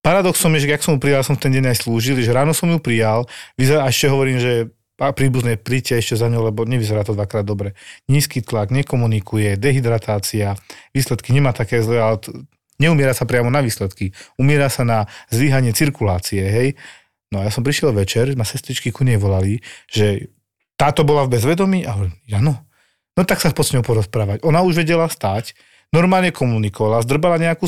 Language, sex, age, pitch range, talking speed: Slovak, male, 40-59, 110-140 Hz, 185 wpm